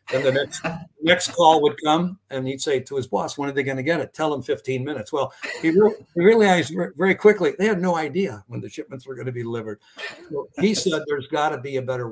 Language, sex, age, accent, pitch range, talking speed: English, male, 60-79, American, 125-145 Hz, 250 wpm